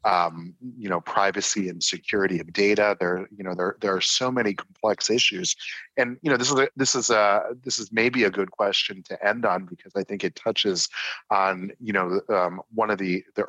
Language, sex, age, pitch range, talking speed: English, male, 30-49, 95-115 Hz, 220 wpm